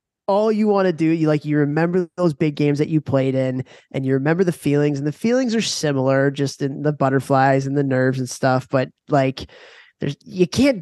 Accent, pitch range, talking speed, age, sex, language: American, 135-160 Hz, 220 wpm, 20-39, male, English